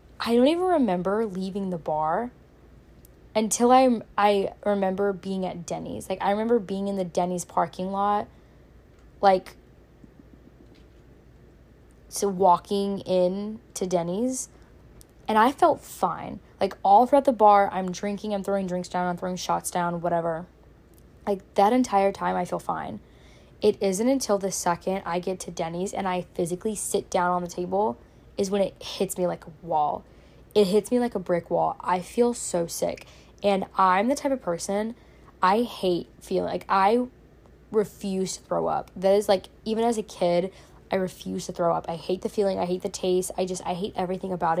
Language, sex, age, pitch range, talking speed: English, female, 10-29, 180-205 Hz, 180 wpm